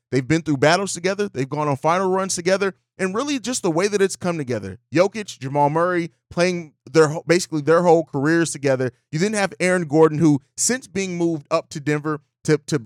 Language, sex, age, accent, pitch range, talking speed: English, male, 30-49, American, 145-175 Hz, 205 wpm